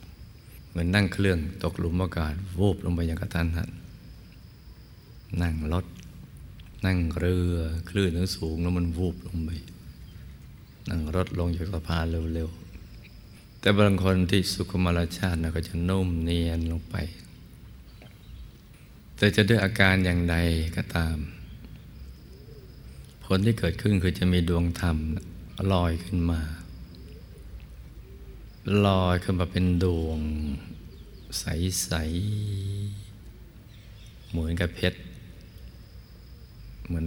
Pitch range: 80-95 Hz